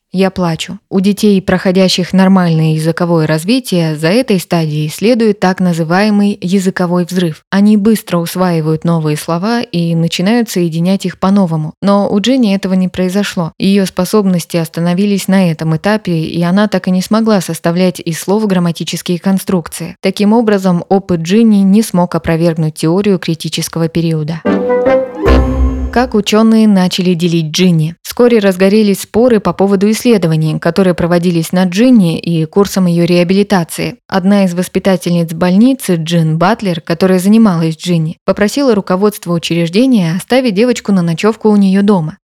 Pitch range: 170-205 Hz